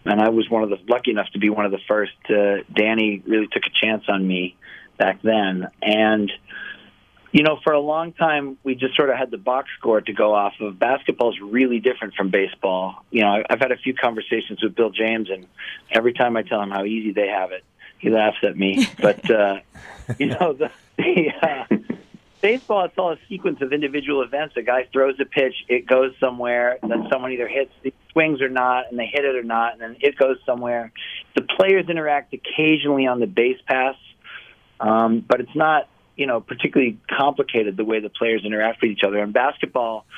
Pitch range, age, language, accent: 110-130 Hz, 40-59, English, American